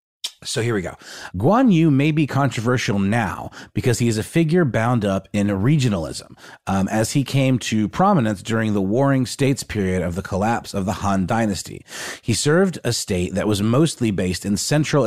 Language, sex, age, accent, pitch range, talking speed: English, male, 30-49, American, 100-135 Hz, 185 wpm